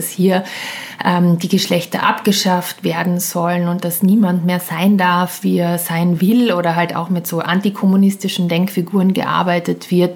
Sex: female